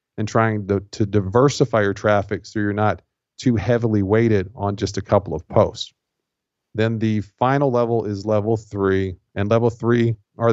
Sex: male